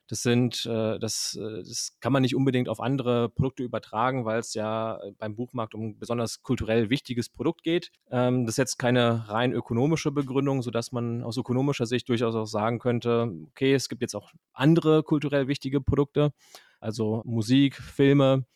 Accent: German